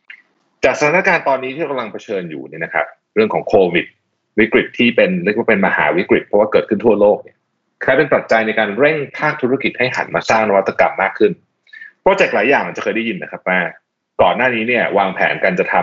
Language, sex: Thai, male